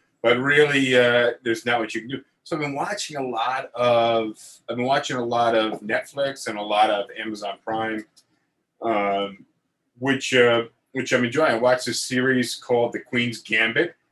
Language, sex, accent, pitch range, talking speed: English, male, American, 110-135 Hz, 185 wpm